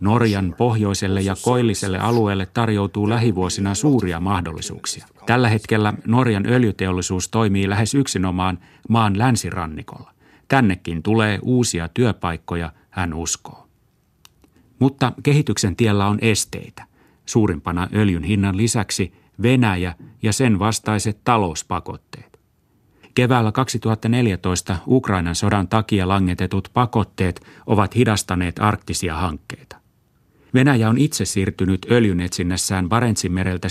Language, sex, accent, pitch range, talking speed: Finnish, male, native, 90-115 Hz, 100 wpm